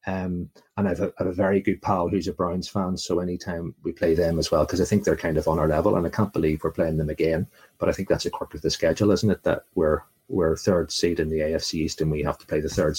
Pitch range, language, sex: 90-115 Hz, English, male